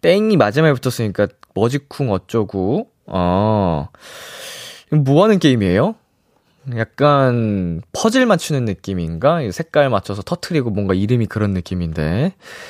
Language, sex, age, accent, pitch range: Korean, male, 20-39, native, 95-155 Hz